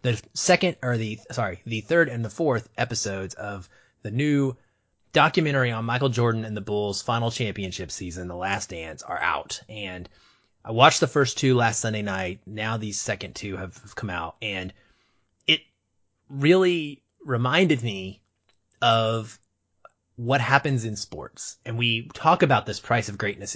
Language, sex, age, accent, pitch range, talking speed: English, male, 30-49, American, 100-130 Hz, 160 wpm